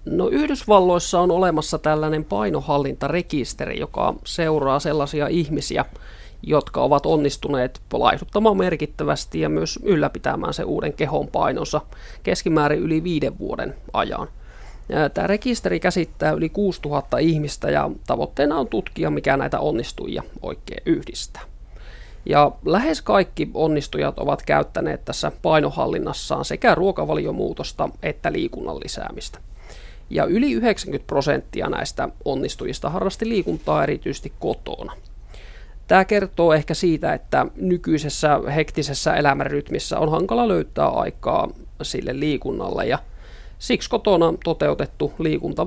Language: Finnish